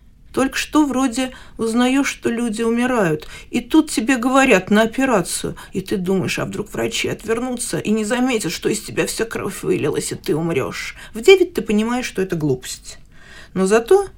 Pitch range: 175-250 Hz